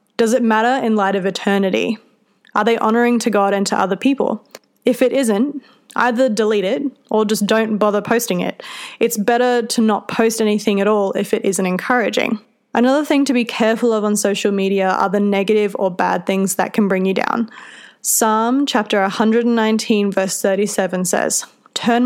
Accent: Australian